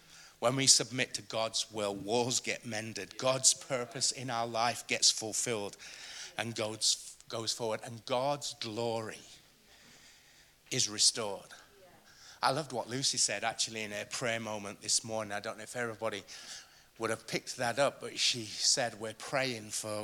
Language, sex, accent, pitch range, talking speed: English, male, British, 115-140 Hz, 155 wpm